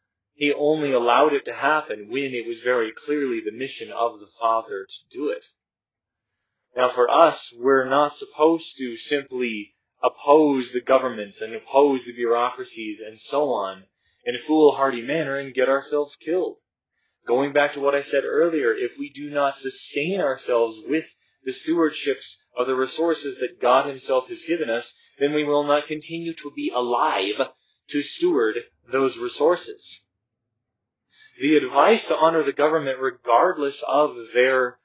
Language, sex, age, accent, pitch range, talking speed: English, male, 20-39, American, 125-160 Hz, 155 wpm